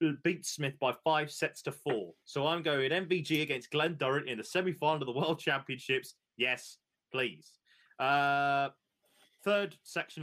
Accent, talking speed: British, 155 wpm